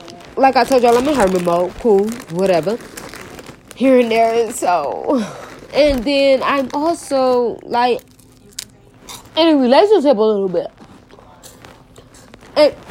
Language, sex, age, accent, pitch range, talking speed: English, female, 20-39, American, 180-270 Hz, 125 wpm